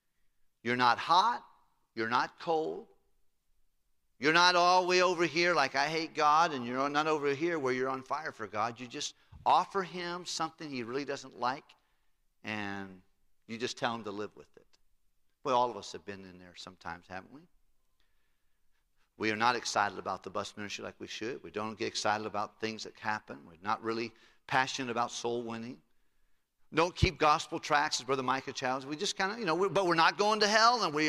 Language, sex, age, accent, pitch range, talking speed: English, male, 50-69, American, 110-170 Hz, 205 wpm